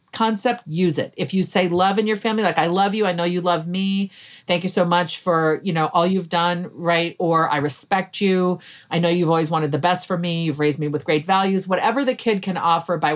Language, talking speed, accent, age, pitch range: English, 250 wpm, American, 40-59, 165-205 Hz